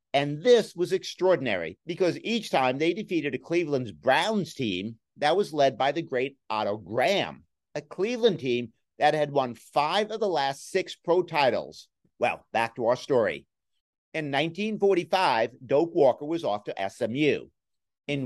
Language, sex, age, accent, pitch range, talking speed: English, male, 50-69, American, 125-175 Hz, 160 wpm